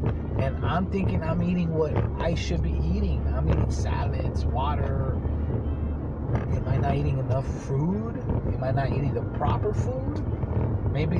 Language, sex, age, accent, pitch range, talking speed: English, male, 30-49, American, 105-120 Hz, 150 wpm